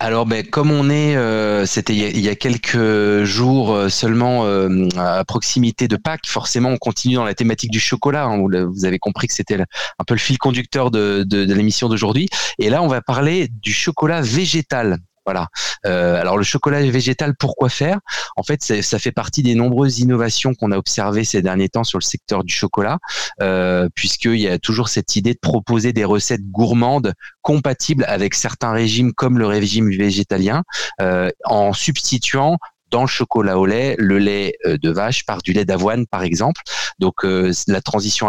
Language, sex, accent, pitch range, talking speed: French, male, French, 95-125 Hz, 195 wpm